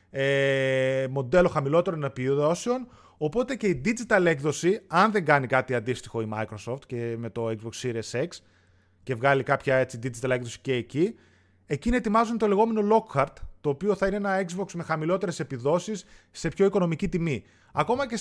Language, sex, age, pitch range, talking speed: Greek, male, 30-49, 125-195 Hz, 165 wpm